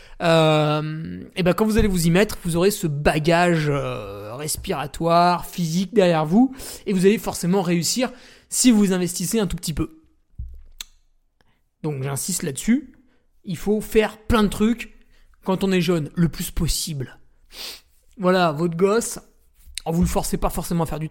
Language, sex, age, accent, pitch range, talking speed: French, male, 20-39, French, 160-195 Hz, 165 wpm